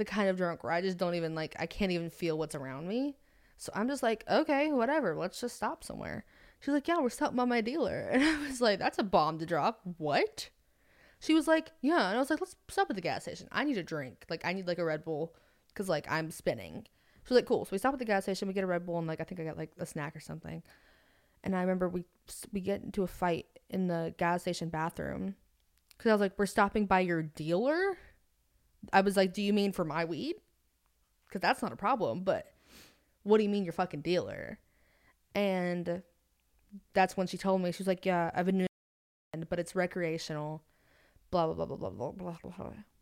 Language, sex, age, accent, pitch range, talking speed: English, female, 20-39, American, 170-210 Hz, 235 wpm